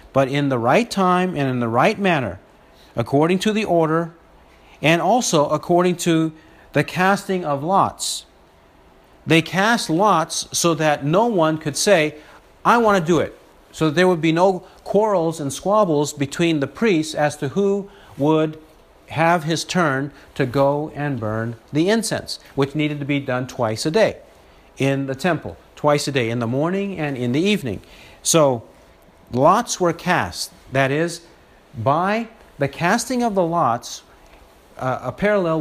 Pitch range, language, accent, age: 135-175 Hz, English, American, 50-69